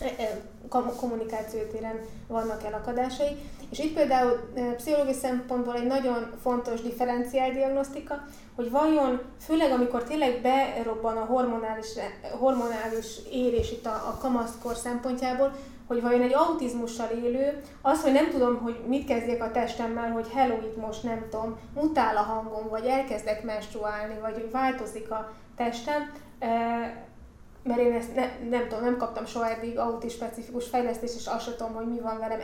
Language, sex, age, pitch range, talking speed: Hungarian, female, 20-39, 225-255 Hz, 145 wpm